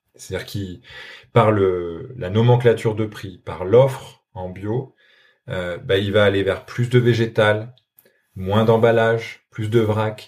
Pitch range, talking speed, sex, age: 105-125 Hz, 150 wpm, male, 20-39